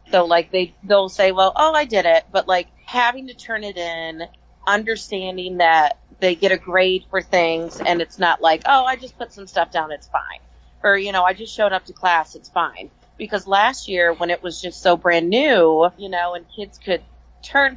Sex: female